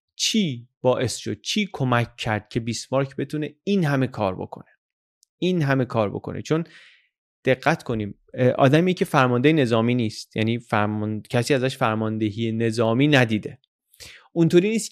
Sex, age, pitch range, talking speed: male, 30-49, 115-160 Hz, 135 wpm